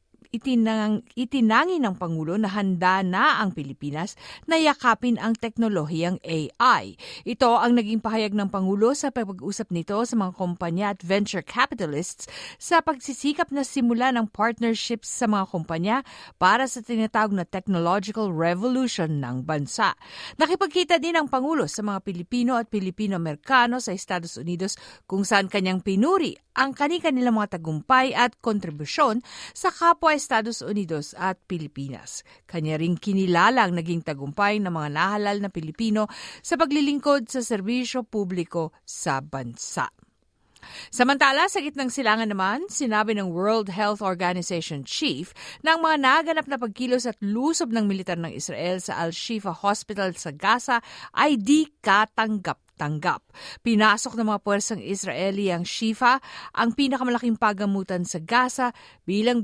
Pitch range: 185-245 Hz